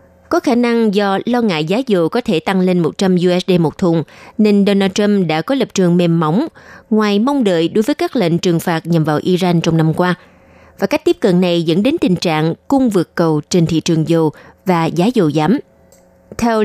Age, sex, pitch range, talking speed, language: 20-39, female, 170-215 Hz, 220 wpm, Vietnamese